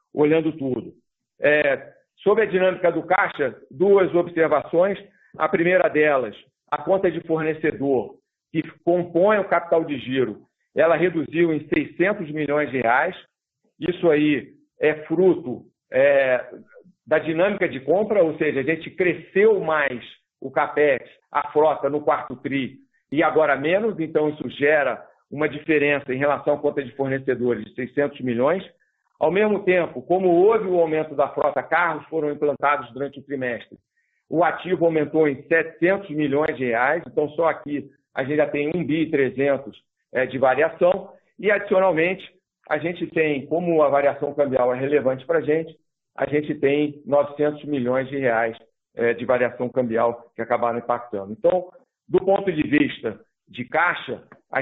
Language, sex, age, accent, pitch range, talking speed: Portuguese, male, 50-69, Brazilian, 140-170 Hz, 150 wpm